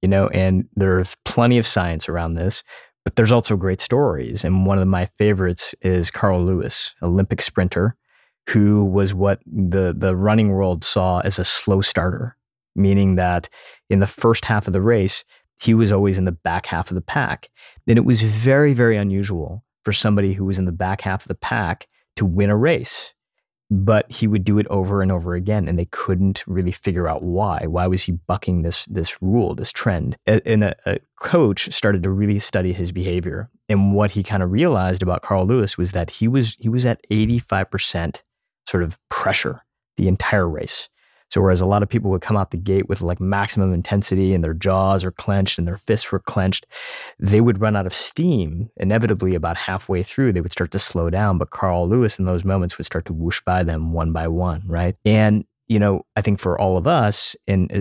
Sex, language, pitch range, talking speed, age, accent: male, English, 90-105 Hz, 210 wpm, 20-39, American